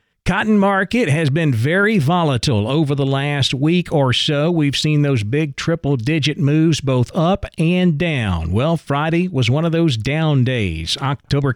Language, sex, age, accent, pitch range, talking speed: English, male, 40-59, American, 120-150 Hz, 160 wpm